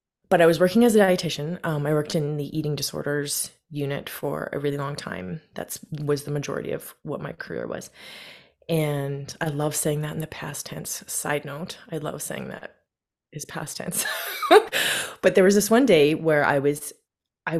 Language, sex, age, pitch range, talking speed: English, female, 20-39, 150-190 Hz, 195 wpm